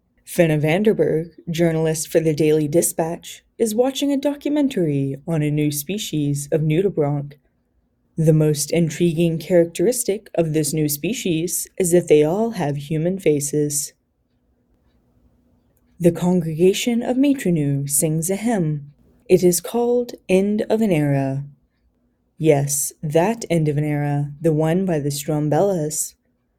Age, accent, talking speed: 10-29, American, 130 wpm